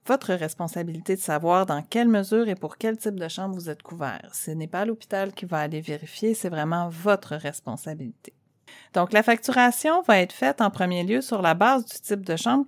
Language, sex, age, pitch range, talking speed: French, female, 40-59, 170-240 Hz, 210 wpm